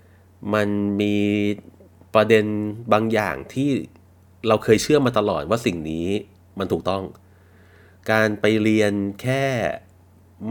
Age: 30-49